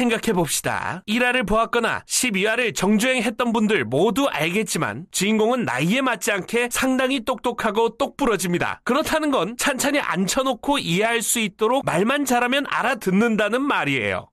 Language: Korean